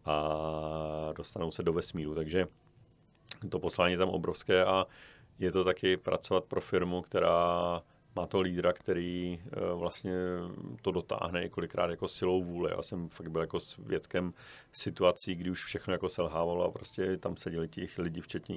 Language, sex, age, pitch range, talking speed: Czech, male, 40-59, 85-90 Hz, 160 wpm